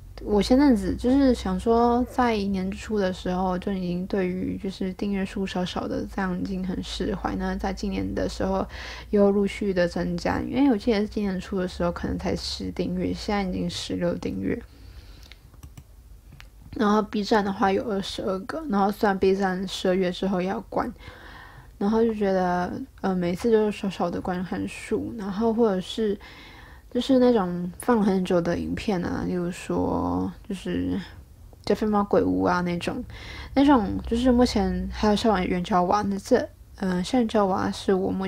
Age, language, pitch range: 20-39, Chinese, 175-215 Hz